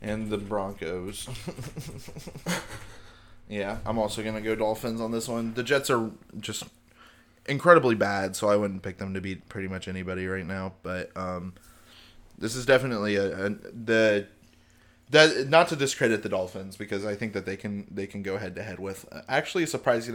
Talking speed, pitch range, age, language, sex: 175 wpm, 95-120 Hz, 20-39, English, male